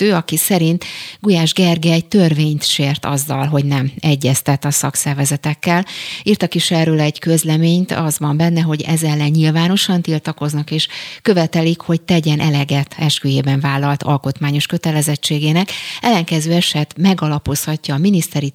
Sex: female